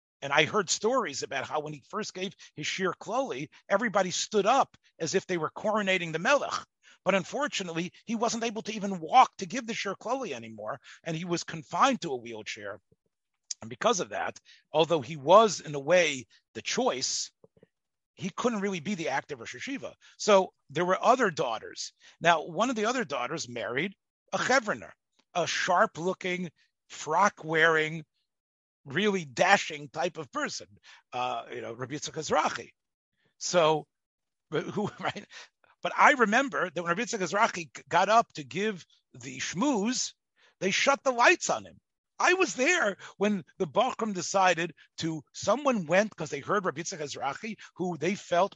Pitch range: 155-215 Hz